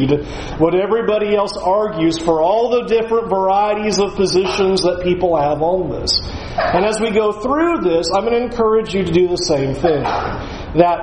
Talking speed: 180 wpm